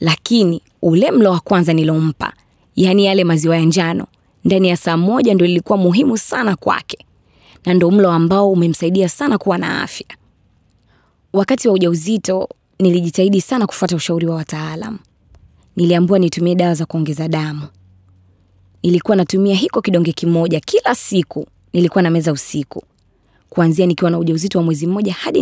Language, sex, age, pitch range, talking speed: Swahili, female, 20-39, 155-185 Hz, 140 wpm